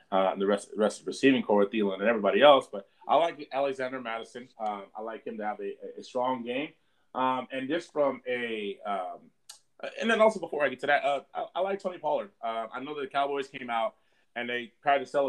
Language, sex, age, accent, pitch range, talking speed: English, male, 30-49, American, 110-150 Hz, 240 wpm